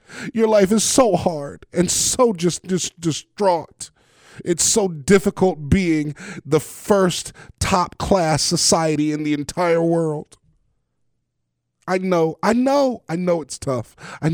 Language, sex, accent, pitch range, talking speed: English, male, American, 115-175 Hz, 135 wpm